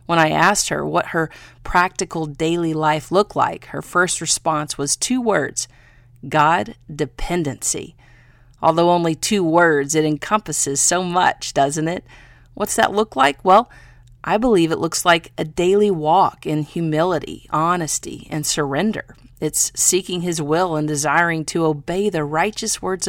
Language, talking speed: English, 150 wpm